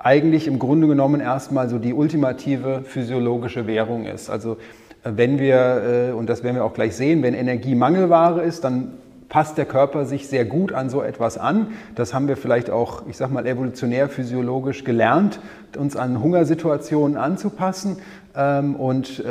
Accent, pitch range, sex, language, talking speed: German, 120-145 Hz, male, German, 160 wpm